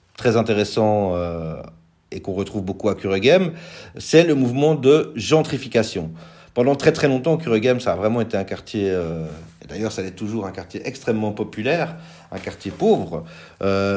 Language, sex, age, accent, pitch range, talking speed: French, male, 40-59, French, 105-140 Hz, 165 wpm